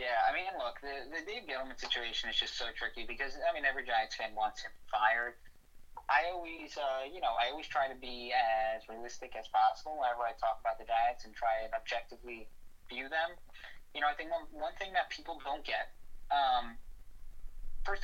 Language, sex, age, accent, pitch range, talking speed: English, male, 20-39, American, 120-190 Hz, 205 wpm